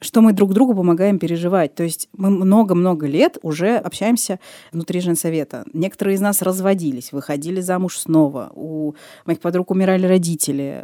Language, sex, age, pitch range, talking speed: Russian, female, 20-39, 155-195 Hz, 150 wpm